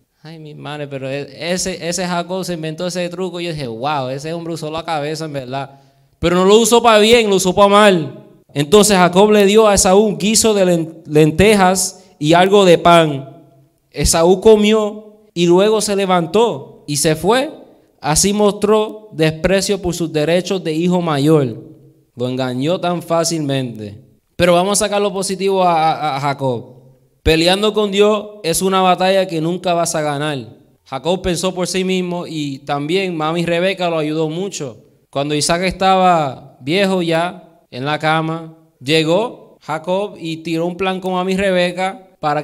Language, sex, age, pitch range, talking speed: Spanish, male, 20-39, 155-195 Hz, 165 wpm